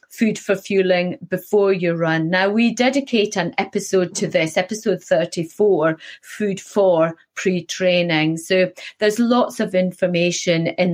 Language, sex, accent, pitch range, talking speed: English, female, British, 165-205 Hz, 130 wpm